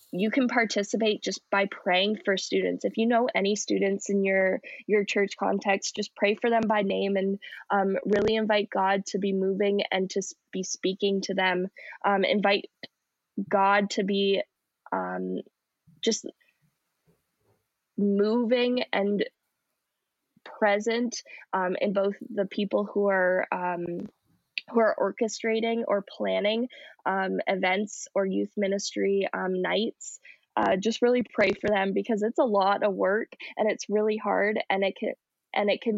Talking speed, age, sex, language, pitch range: 150 wpm, 10-29, female, English, 195-220 Hz